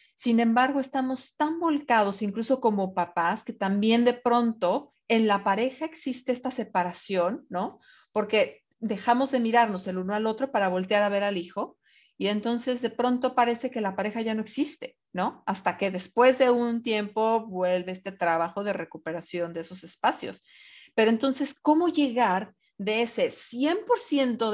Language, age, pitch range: Spanish, 40-59, 195-255 Hz